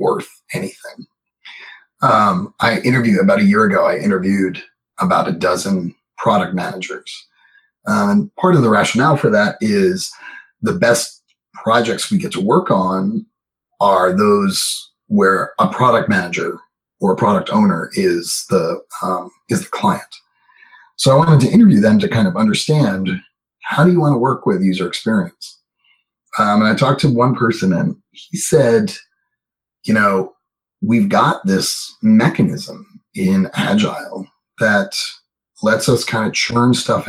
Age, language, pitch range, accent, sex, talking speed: 30-49, English, 145-215 Hz, American, male, 150 wpm